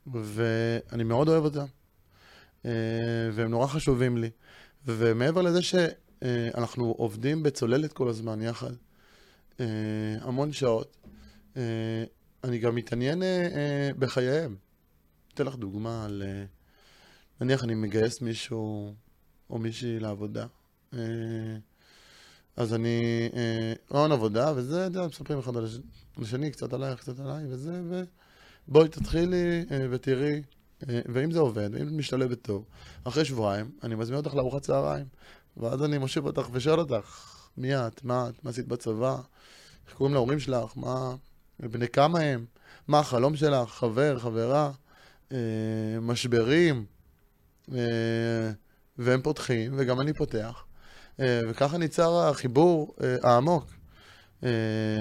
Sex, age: male, 20-39